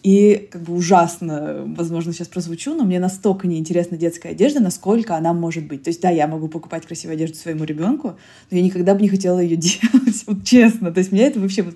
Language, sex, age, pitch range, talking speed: Russian, female, 20-39, 165-195 Hz, 220 wpm